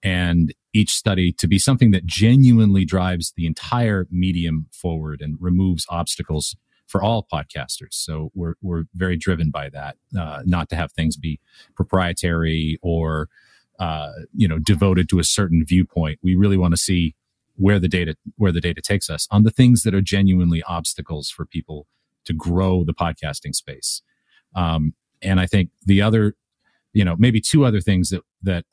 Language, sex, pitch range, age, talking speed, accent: English, male, 85-100 Hz, 40-59, 175 wpm, American